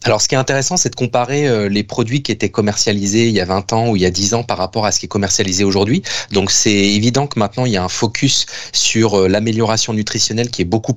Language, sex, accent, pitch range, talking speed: French, male, French, 100-125 Hz, 275 wpm